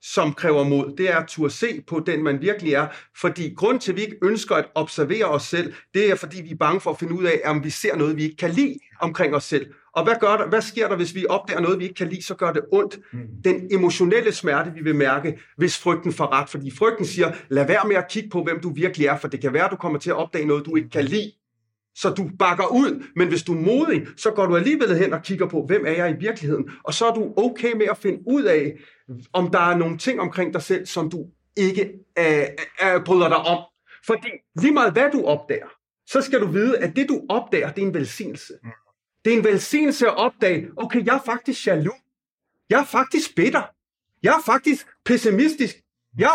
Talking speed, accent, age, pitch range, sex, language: 245 wpm, native, 30-49, 155-225 Hz, male, Danish